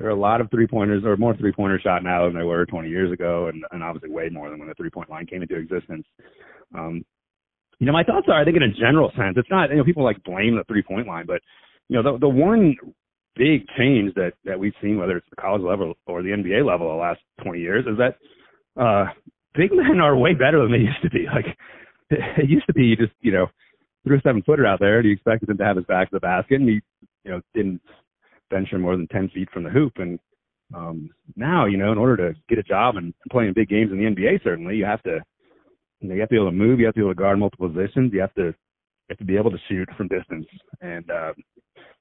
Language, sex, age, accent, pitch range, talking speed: English, male, 30-49, American, 95-130 Hz, 255 wpm